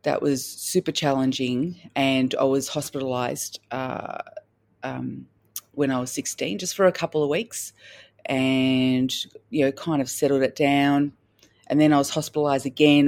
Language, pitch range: English, 125-140 Hz